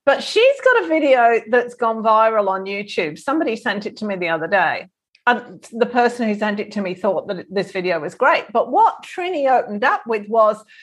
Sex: female